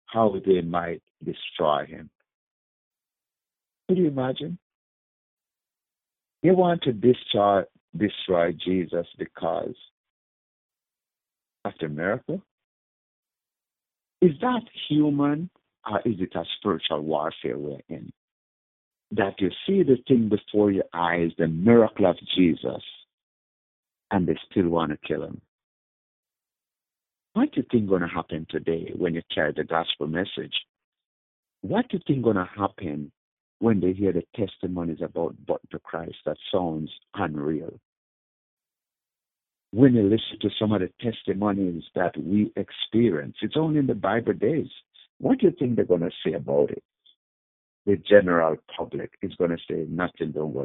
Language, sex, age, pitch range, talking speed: English, male, 60-79, 80-115 Hz, 140 wpm